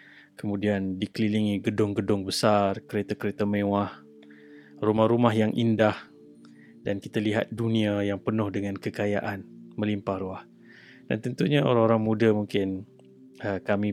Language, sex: Malay, male